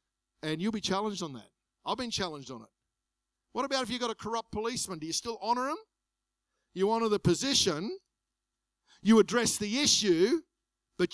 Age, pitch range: 50-69, 120-180 Hz